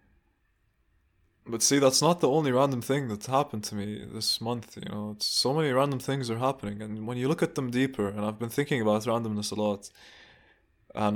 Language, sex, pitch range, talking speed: English, male, 105-120 Hz, 205 wpm